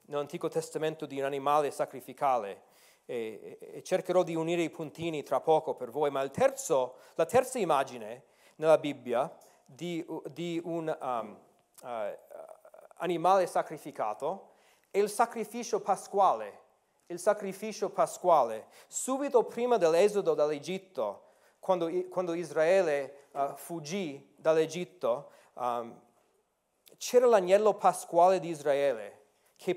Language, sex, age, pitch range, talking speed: Italian, male, 30-49, 155-195 Hz, 95 wpm